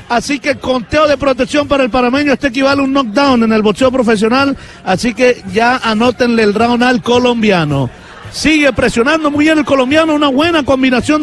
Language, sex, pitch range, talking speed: Spanish, male, 235-290 Hz, 180 wpm